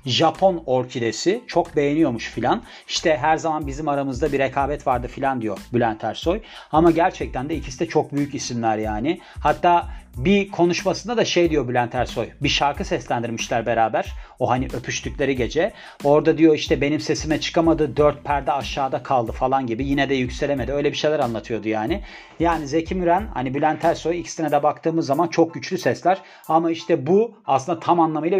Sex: male